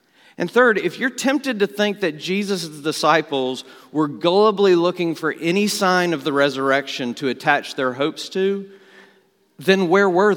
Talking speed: 155 wpm